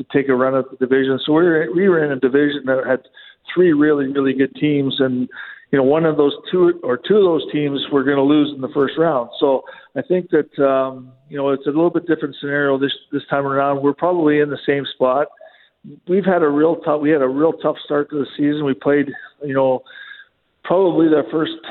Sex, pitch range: male, 135-150 Hz